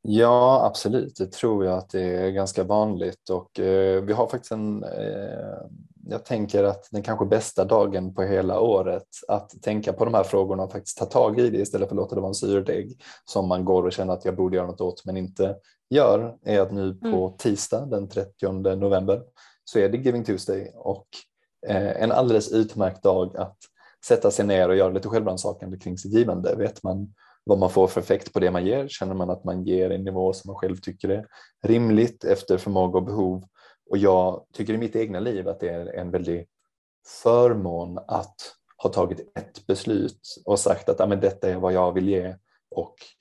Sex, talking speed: male, 205 wpm